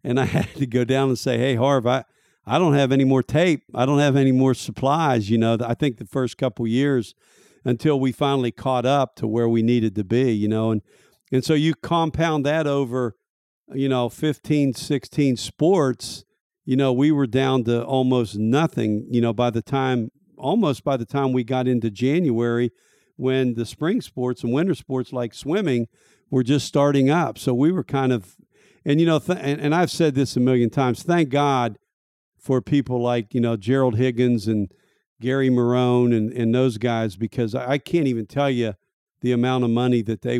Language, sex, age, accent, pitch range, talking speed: English, male, 50-69, American, 115-140 Hz, 205 wpm